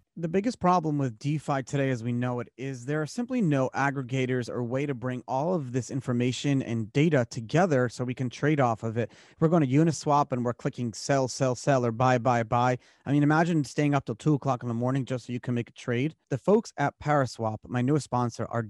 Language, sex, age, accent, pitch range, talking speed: English, male, 30-49, American, 125-150 Hz, 240 wpm